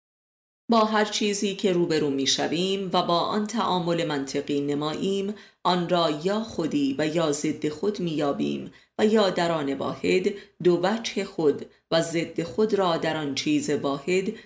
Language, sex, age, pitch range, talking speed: Persian, female, 30-49, 150-195 Hz, 160 wpm